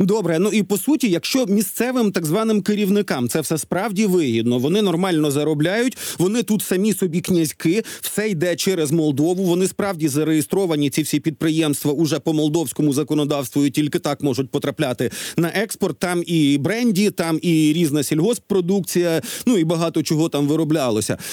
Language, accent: Ukrainian, native